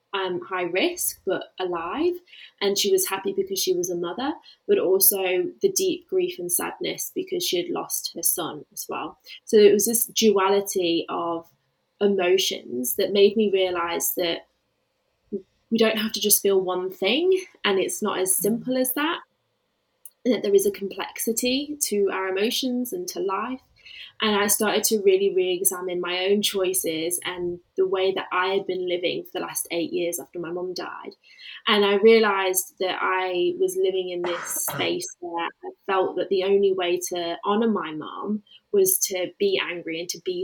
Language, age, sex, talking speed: English, 20-39, female, 185 wpm